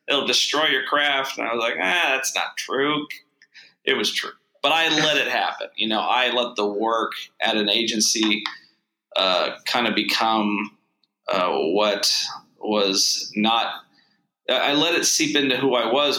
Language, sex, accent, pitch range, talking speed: English, male, American, 105-125 Hz, 165 wpm